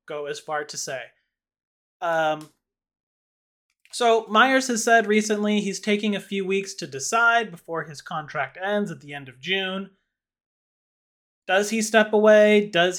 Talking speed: 150 wpm